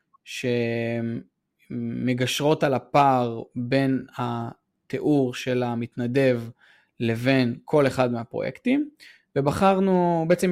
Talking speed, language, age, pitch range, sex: 75 wpm, Hebrew, 20-39, 125-170 Hz, male